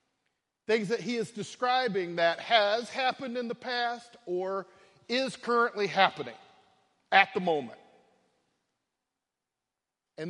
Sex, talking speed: male, 110 wpm